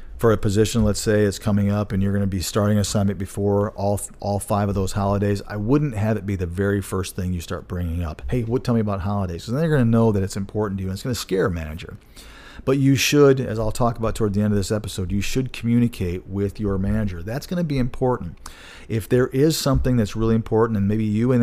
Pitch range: 100-120 Hz